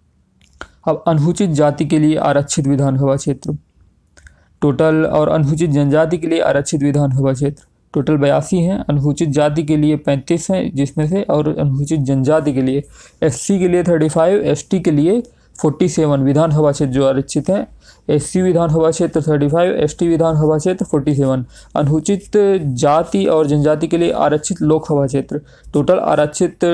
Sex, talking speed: male, 155 wpm